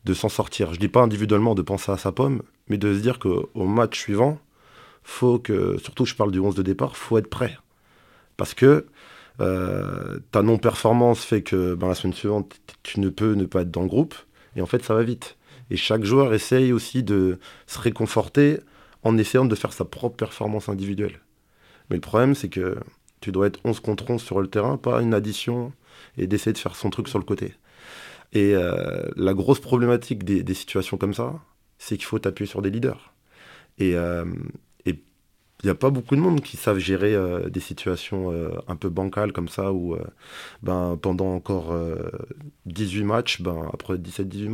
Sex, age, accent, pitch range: male, 30-49, French, 95-120 Hz